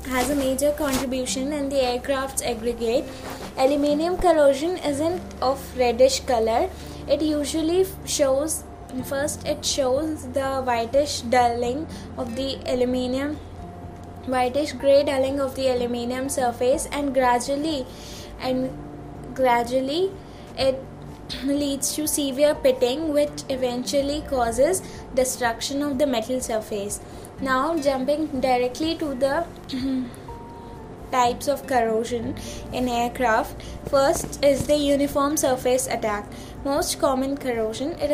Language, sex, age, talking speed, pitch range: English, female, 10-29, 110 wpm, 250-290 Hz